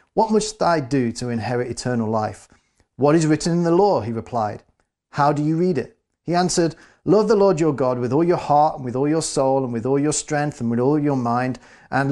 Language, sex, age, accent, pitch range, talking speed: English, male, 40-59, British, 120-150 Hz, 240 wpm